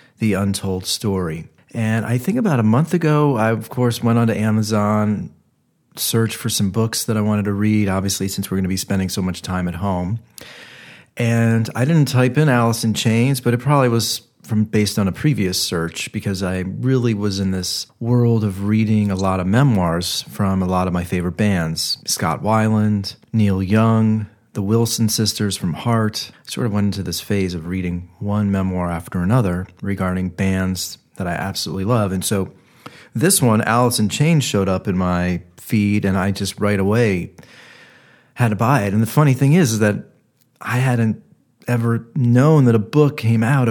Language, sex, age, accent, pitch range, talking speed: English, male, 40-59, American, 95-115 Hz, 190 wpm